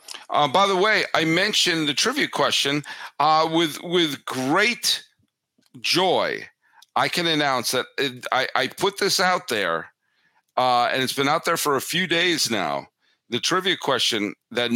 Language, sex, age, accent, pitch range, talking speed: English, male, 50-69, American, 120-170 Hz, 160 wpm